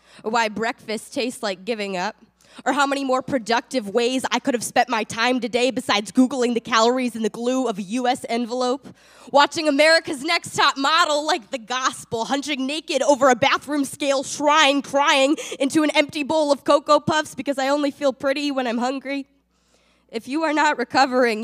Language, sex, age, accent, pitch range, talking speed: English, female, 10-29, American, 265-345 Hz, 190 wpm